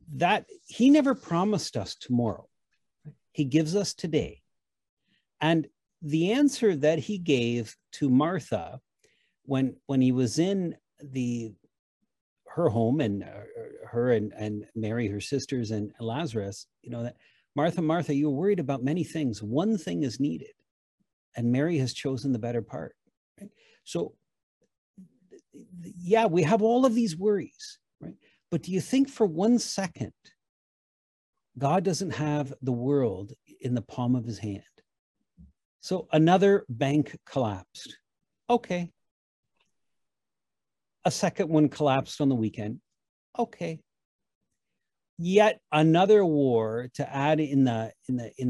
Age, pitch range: 50-69, 125-185 Hz